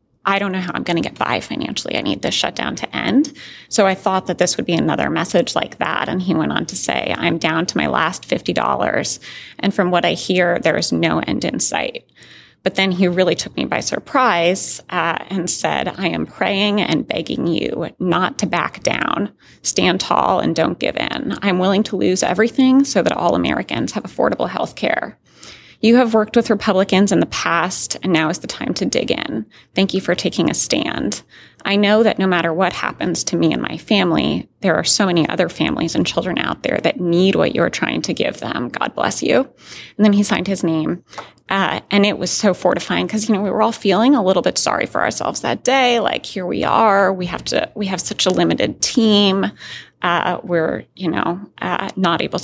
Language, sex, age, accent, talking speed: English, female, 30-49, American, 220 wpm